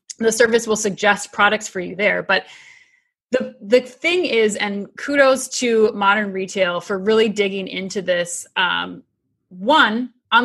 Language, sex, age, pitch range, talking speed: English, female, 20-39, 190-235 Hz, 150 wpm